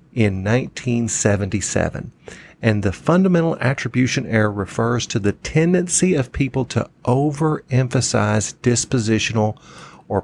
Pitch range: 100-135 Hz